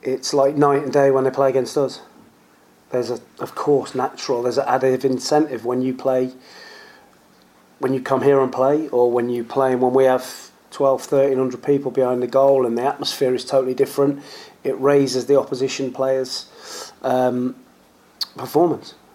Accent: British